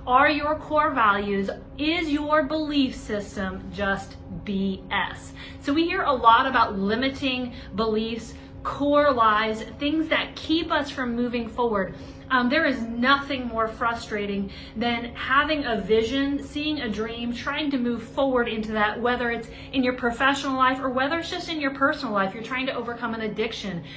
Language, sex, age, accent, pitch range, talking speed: English, female, 30-49, American, 220-275 Hz, 165 wpm